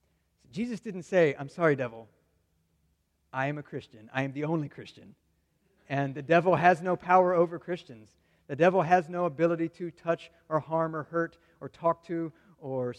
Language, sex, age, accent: English, male, 40-59, American